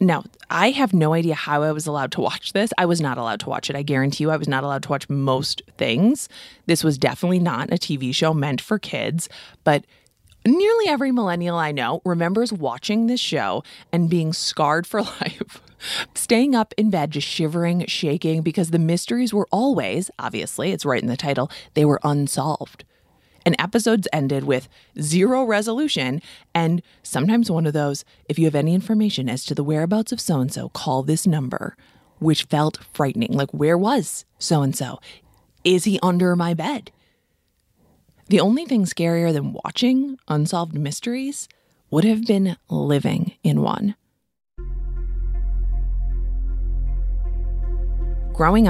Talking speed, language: 160 wpm, English